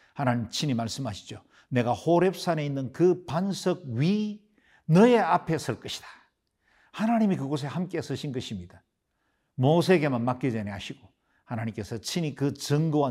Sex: male